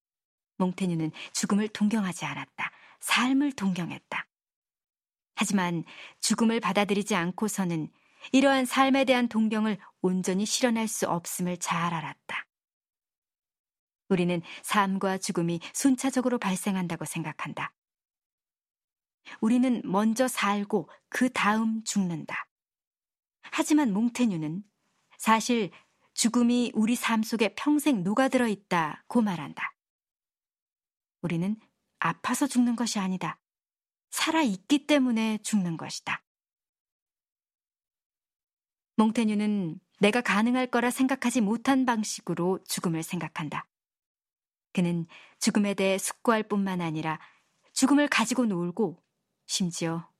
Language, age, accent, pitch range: Korean, 40-59, native, 185-240 Hz